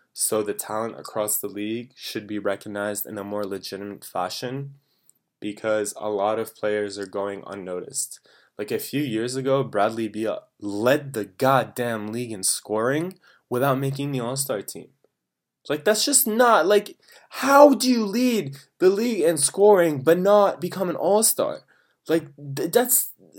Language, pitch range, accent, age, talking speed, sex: English, 100-135 Hz, American, 20-39, 155 wpm, male